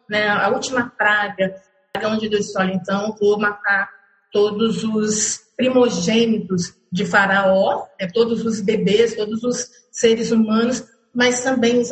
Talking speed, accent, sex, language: 135 wpm, Brazilian, female, Portuguese